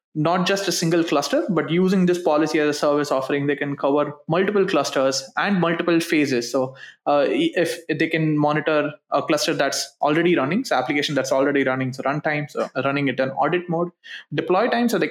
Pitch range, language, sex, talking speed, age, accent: 135-160 Hz, English, male, 195 wpm, 20-39, Indian